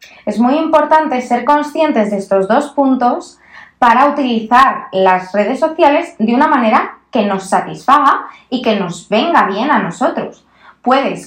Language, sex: Spanish, female